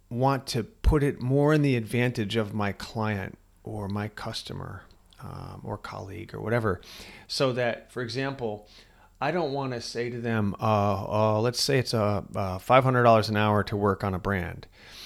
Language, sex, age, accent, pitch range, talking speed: English, male, 40-59, American, 105-130 Hz, 180 wpm